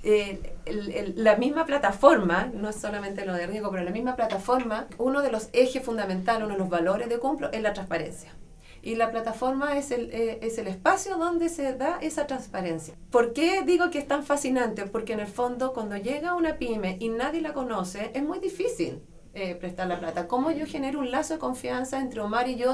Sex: female